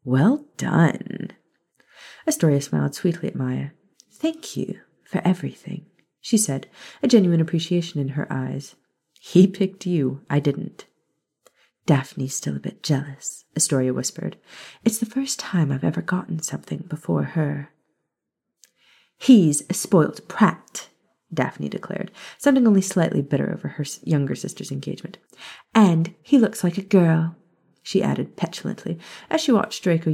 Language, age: English, 30-49